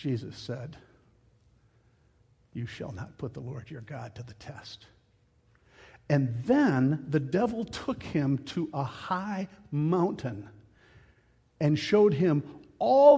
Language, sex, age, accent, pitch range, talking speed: English, male, 60-79, American, 110-150 Hz, 125 wpm